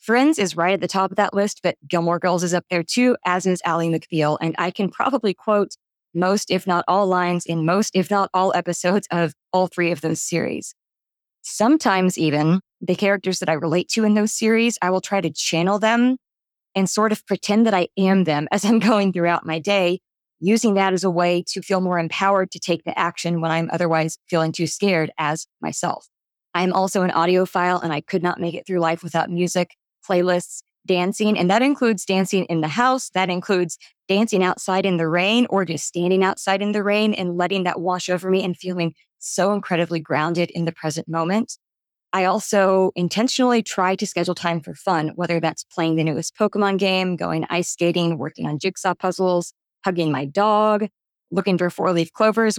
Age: 20-39